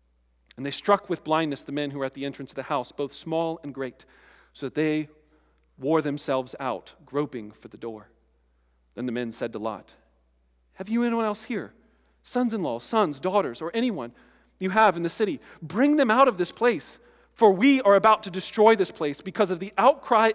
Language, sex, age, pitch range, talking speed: English, male, 40-59, 130-200 Hz, 200 wpm